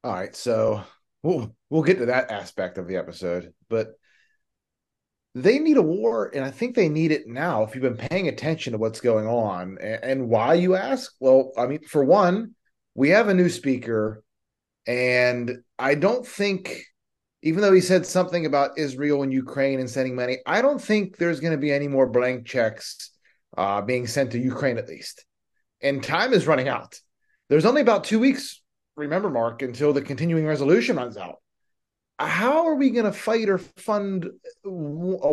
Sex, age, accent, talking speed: male, 30-49, American, 185 wpm